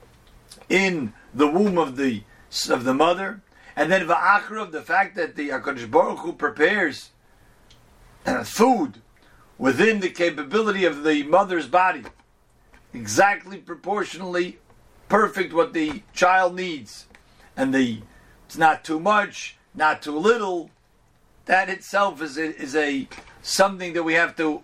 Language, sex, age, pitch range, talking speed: English, male, 50-69, 160-200 Hz, 130 wpm